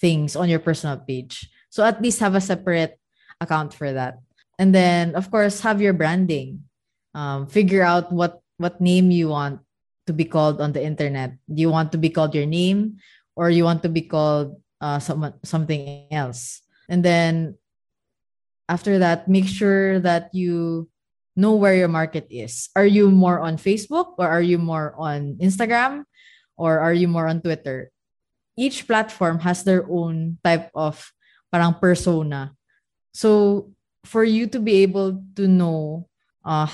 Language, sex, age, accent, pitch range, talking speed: Filipino, female, 20-39, native, 155-190 Hz, 165 wpm